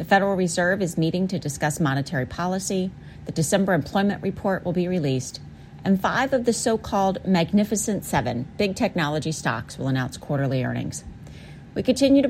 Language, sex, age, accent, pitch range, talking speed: English, female, 40-59, American, 160-220 Hz, 160 wpm